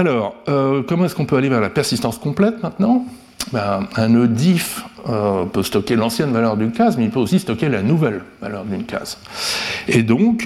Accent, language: French, French